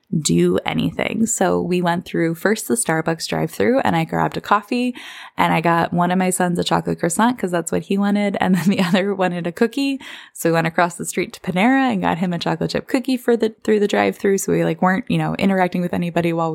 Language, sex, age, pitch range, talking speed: English, female, 20-39, 160-205 Hz, 250 wpm